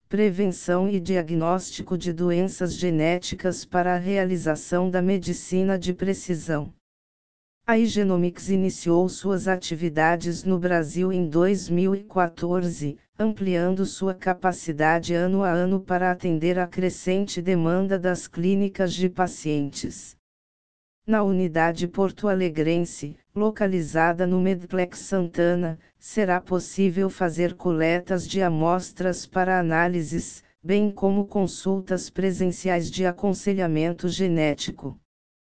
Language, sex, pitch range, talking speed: Portuguese, female, 175-190 Hz, 100 wpm